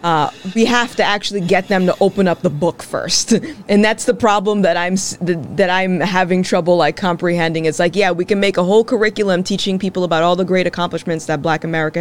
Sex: female